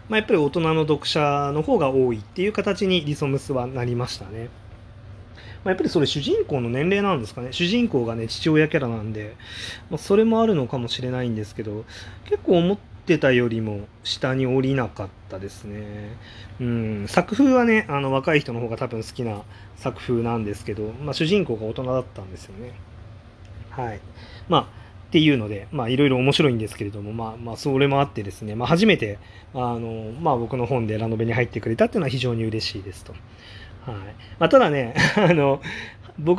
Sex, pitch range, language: male, 110-150 Hz, Japanese